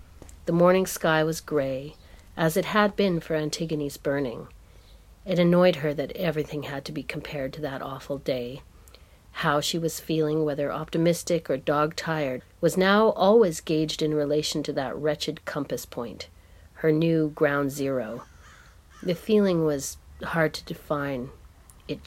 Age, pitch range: 40-59, 135-175 Hz